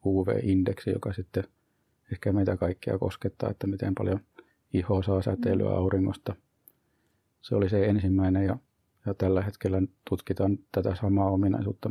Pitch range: 95-105 Hz